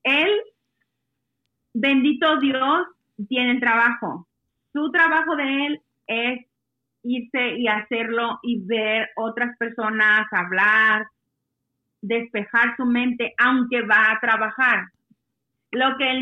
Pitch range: 225-275 Hz